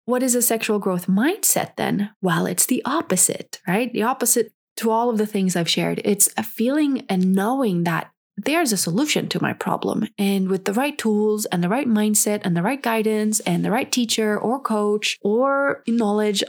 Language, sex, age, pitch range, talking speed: English, female, 20-39, 185-225 Hz, 195 wpm